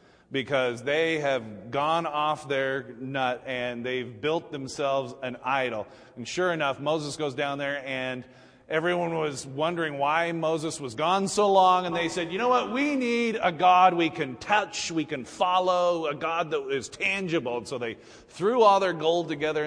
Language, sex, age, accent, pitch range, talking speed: English, male, 30-49, American, 135-180 Hz, 180 wpm